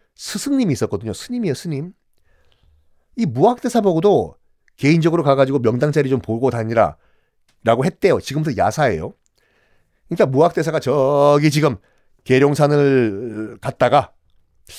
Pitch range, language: 140-230 Hz, Korean